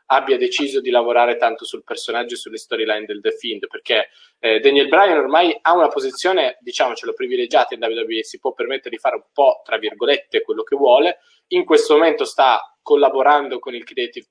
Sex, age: male, 20-39